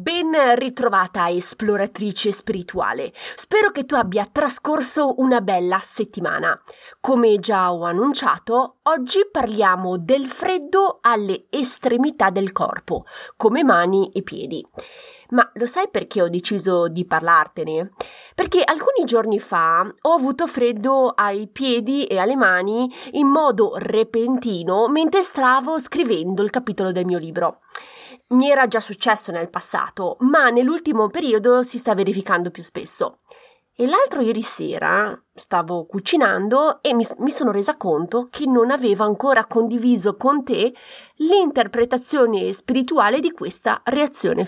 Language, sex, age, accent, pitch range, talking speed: Italian, female, 20-39, native, 200-280 Hz, 130 wpm